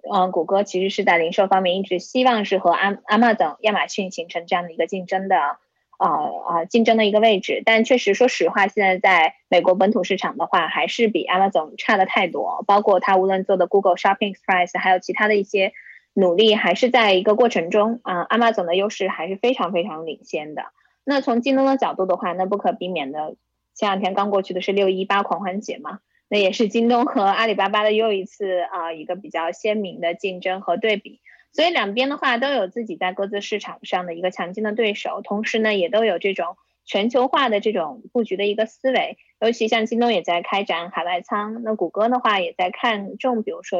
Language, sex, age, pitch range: Chinese, female, 20-39, 185-230 Hz